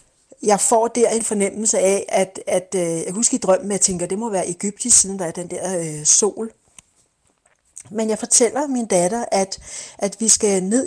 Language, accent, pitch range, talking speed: Danish, native, 185-220 Hz, 200 wpm